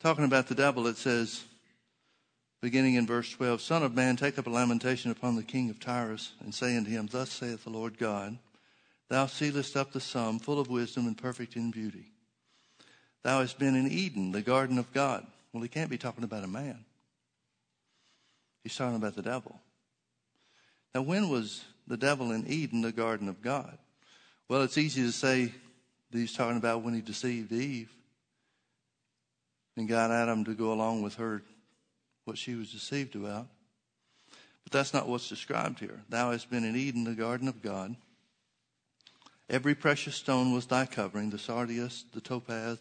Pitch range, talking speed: 115-130 Hz, 180 wpm